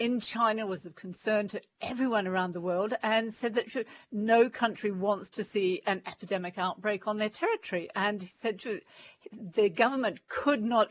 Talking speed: 170 wpm